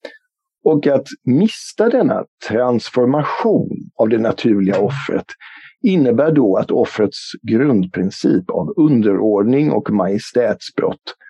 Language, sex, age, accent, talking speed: English, male, 50-69, Swedish, 95 wpm